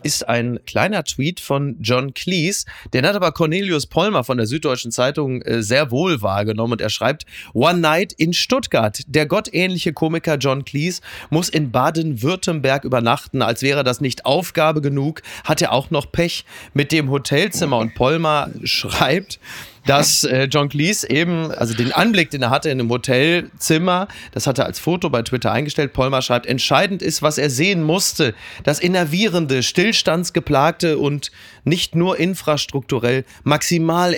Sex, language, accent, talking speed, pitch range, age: male, German, German, 160 wpm, 130-170 Hz, 30-49